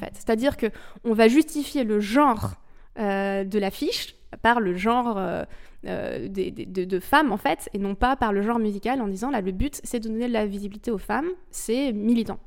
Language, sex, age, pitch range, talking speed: French, female, 20-39, 205-250 Hz, 200 wpm